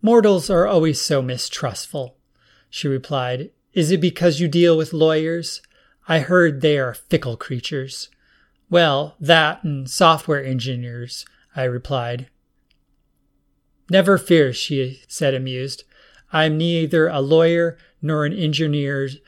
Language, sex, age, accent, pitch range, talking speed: English, male, 30-49, American, 130-160 Hz, 125 wpm